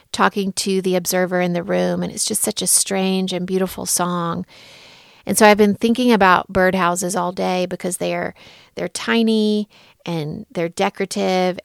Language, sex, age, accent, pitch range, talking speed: English, female, 30-49, American, 180-205 Hz, 170 wpm